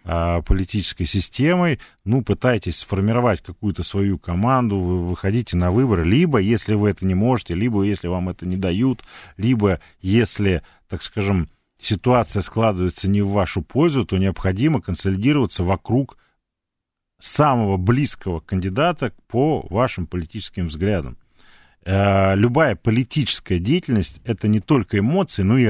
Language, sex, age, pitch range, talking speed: Russian, male, 40-59, 90-120 Hz, 125 wpm